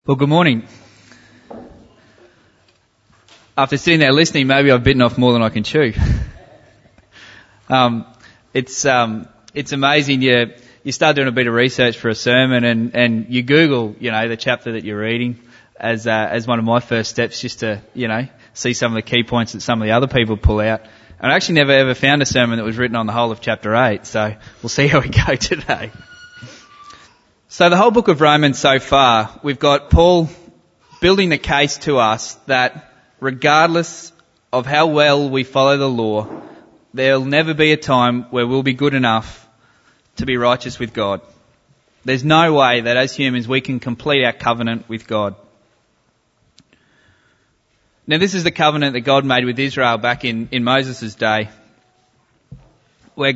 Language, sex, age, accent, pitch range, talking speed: English, male, 20-39, Australian, 115-140 Hz, 180 wpm